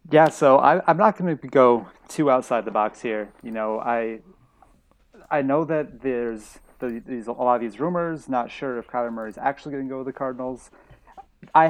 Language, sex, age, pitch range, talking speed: English, male, 30-49, 110-135 Hz, 200 wpm